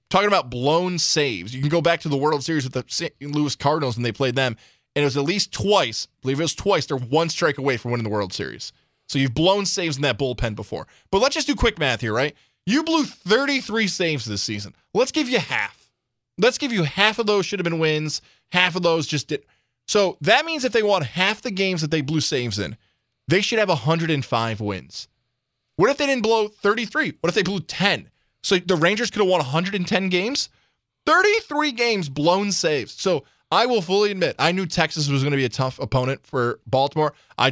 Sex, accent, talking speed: male, American, 225 wpm